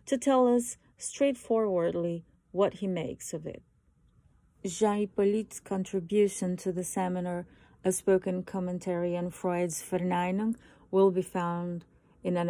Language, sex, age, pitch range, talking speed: English, female, 30-49, 180-215 Hz, 125 wpm